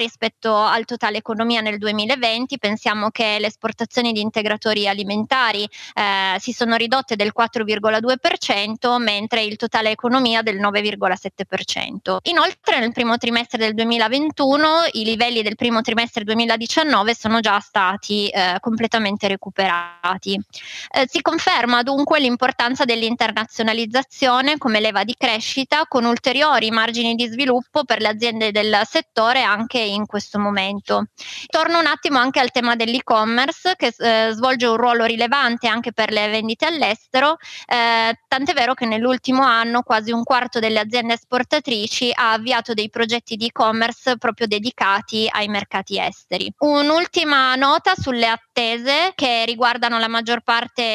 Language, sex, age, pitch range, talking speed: Italian, female, 20-39, 220-255 Hz, 140 wpm